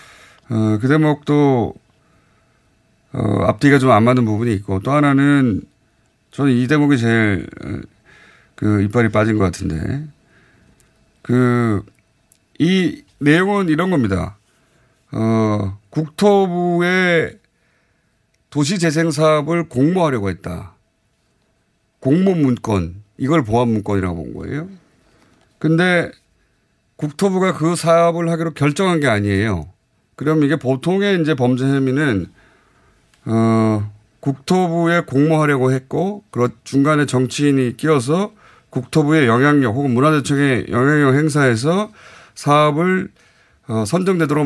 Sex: male